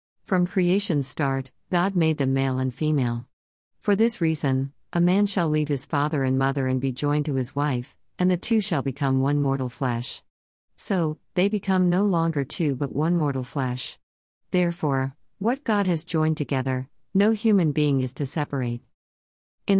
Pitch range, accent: 130-175 Hz, American